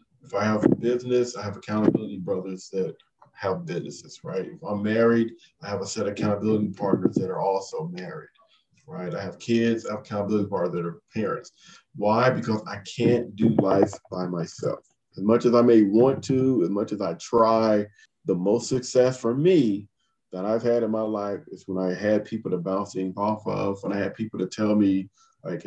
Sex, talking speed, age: male, 200 wpm, 40-59